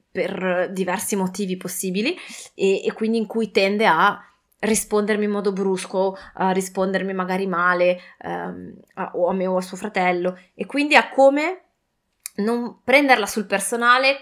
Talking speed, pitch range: 150 wpm, 180-220 Hz